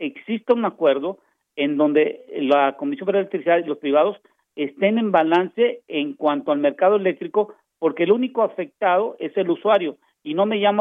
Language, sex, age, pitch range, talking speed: Spanish, male, 50-69, 160-210 Hz, 180 wpm